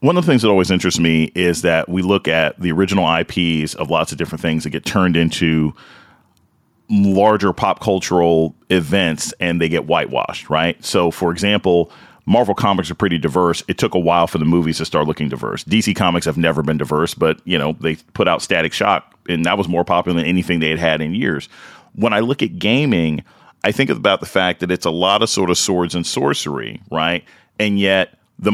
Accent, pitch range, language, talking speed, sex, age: American, 85-105 Hz, English, 215 wpm, male, 40-59